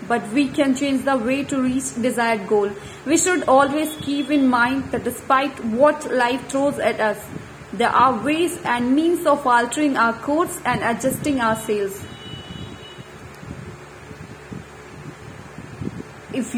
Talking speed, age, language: 135 wpm, 30-49, English